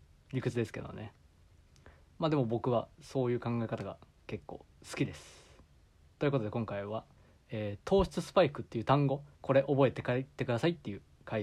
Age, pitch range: 20-39, 115-155 Hz